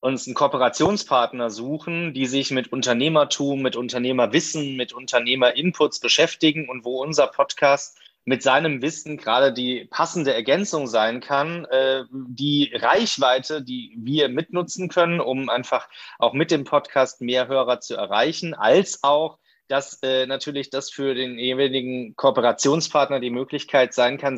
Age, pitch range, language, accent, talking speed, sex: 30-49, 125-150 Hz, German, German, 135 wpm, male